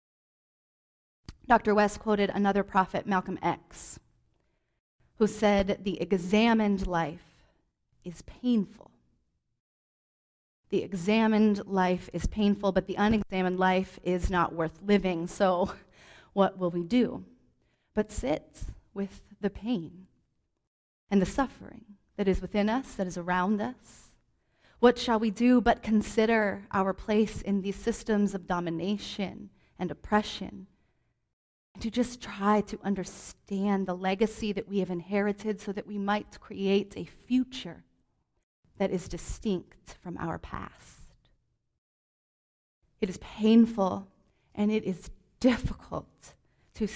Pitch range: 185-215 Hz